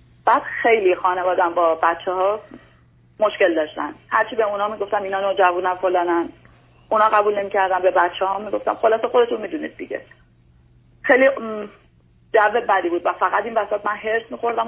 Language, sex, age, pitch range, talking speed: Persian, female, 30-49, 170-215 Hz, 145 wpm